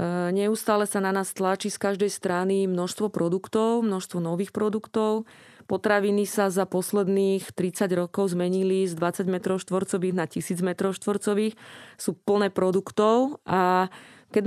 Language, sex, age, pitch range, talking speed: Slovak, female, 30-49, 185-210 Hz, 130 wpm